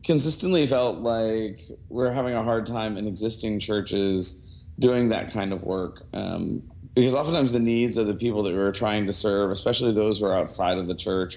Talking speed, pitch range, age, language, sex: 205 wpm, 100-115 Hz, 40-59, English, male